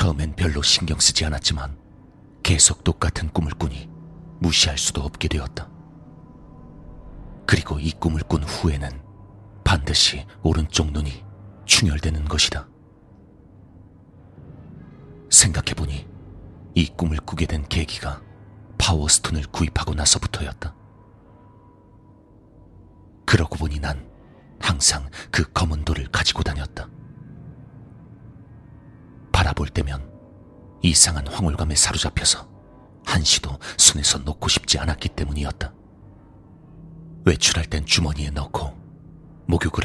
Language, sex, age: Korean, male, 40-59